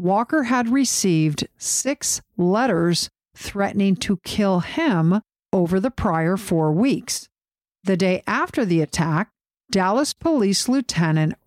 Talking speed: 115 wpm